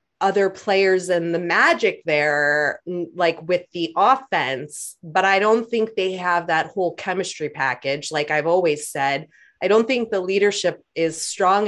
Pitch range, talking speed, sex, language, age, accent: 165-210 Hz, 160 wpm, female, English, 30-49, American